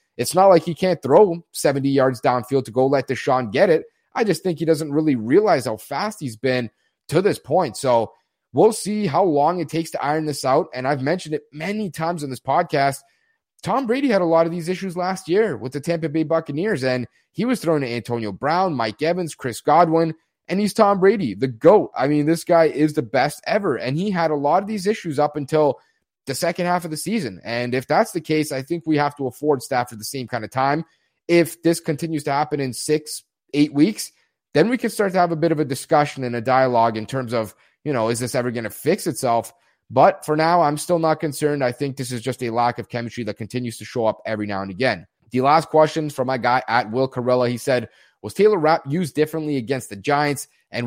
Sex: male